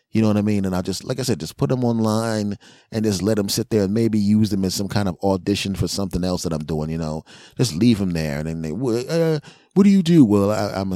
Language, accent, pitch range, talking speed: English, American, 90-120 Hz, 295 wpm